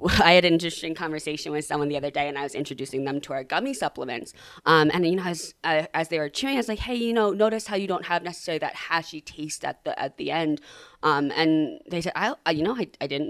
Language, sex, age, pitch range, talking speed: English, female, 20-39, 150-175 Hz, 270 wpm